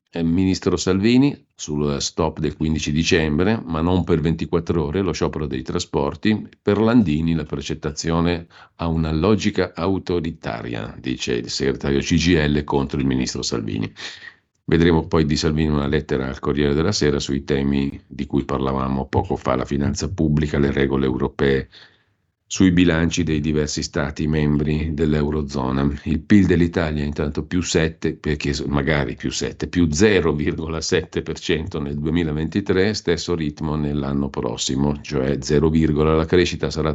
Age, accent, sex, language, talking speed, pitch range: 50-69, native, male, Italian, 135 wpm, 70-85 Hz